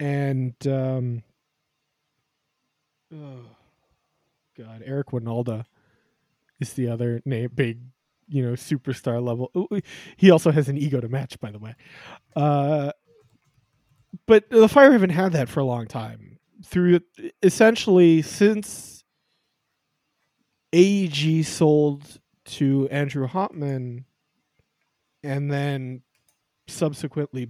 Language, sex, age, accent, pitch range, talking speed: English, male, 20-39, American, 125-155 Hz, 100 wpm